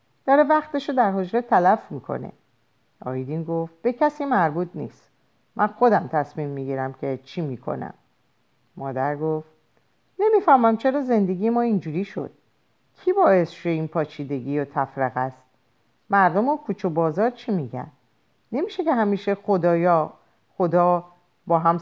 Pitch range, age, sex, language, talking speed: 145-215 Hz, 50-69, female, Persian, 130 wpm